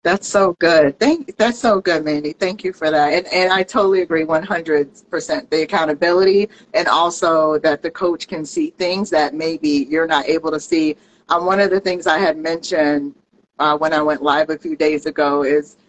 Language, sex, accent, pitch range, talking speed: English, female, American, 150-185 Hz, 210 wpm